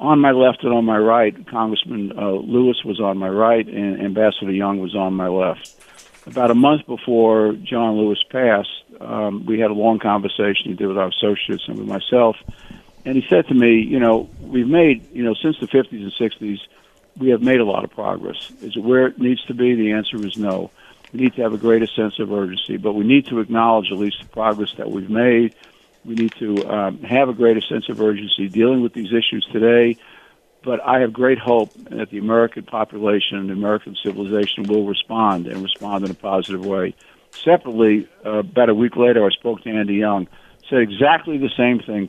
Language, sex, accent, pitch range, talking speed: English, male, American, 100-120 Hz, 210 wpm